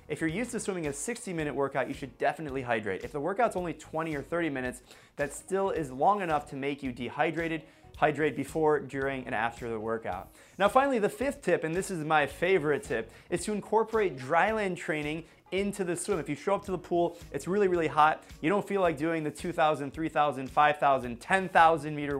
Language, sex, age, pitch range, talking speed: English, male, 20-39, 145-185 Hz, 205 wpm